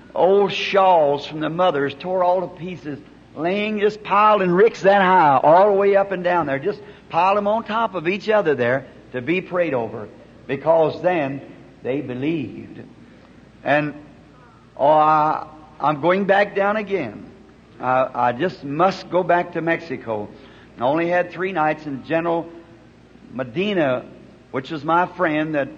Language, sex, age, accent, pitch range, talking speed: English, male, 60-79, American, 140-180 Hz, 160 wpm